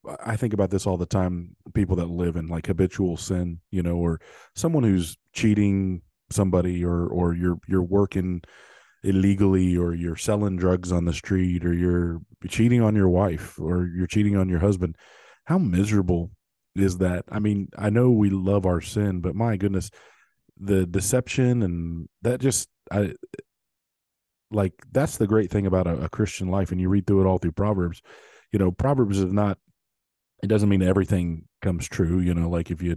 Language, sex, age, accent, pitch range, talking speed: English, male, 20-39, American, 90-105 Hz, 185 wpm